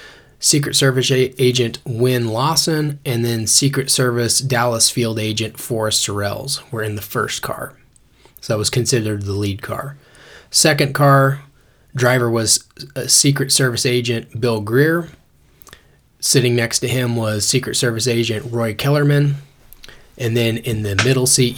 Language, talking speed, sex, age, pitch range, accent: English, 145 wpm, male, 20-39, 110-130 Hz, American